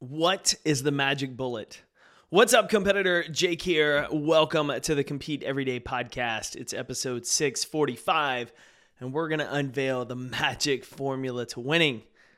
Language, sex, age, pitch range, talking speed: English, male, 20-39, 135-165 Hz, 140 wpm